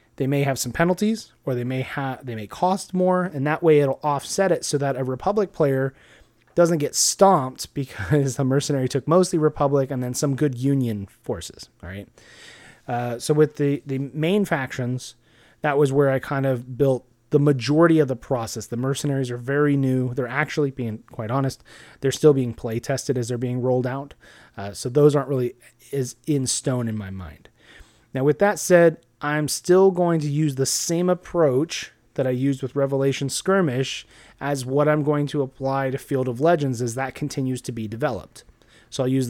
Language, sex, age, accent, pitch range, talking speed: English, male, 30-49, American, 125-150 Hz, 195 wpm